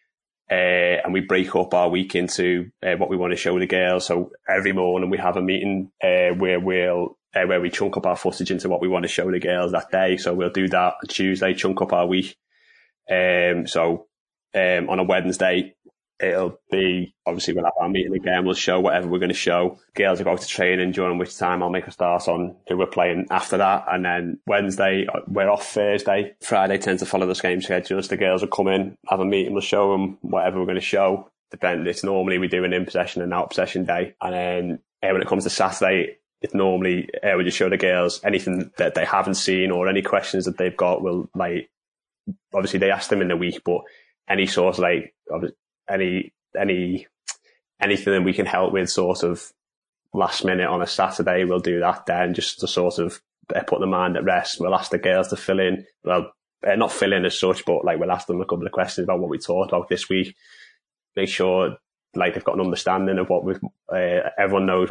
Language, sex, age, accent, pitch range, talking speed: English, male, 20-39, British, 90-95 Hz, 225 wpm